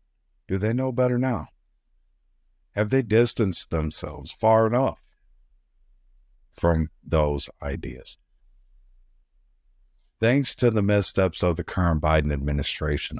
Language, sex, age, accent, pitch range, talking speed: English, male, 50-69, American, 75-95 Hz, 105 wpm